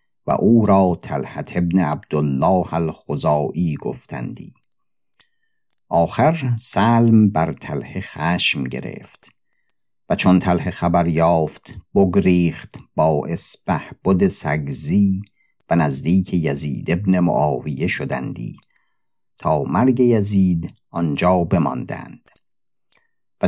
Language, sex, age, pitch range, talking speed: Persian, male, 50-69, 80-95 Hz, 90 wpm